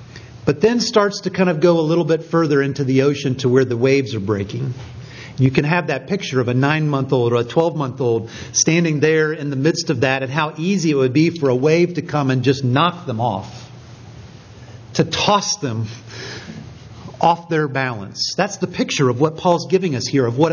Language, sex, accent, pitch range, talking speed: English, male, American, 125-165 Hz, 210 wpm